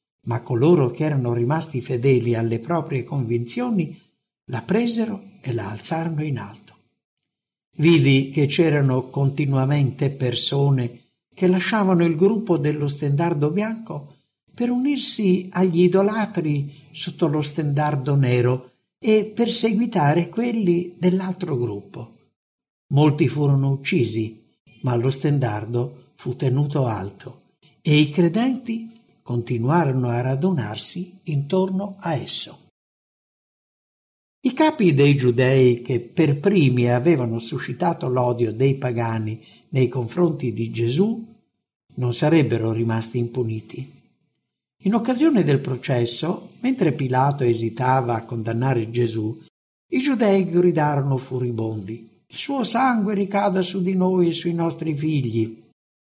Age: 60-79